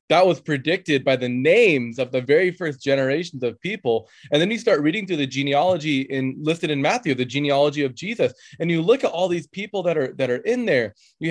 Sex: male